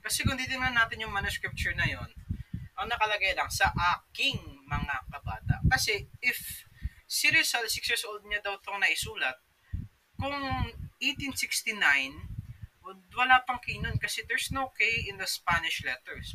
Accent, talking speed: native, 145 wpm